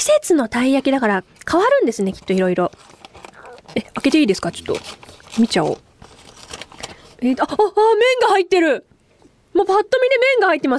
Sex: female